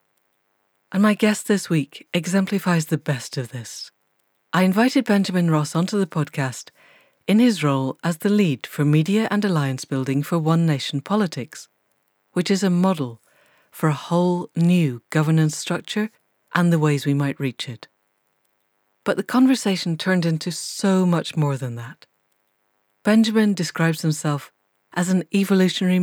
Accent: British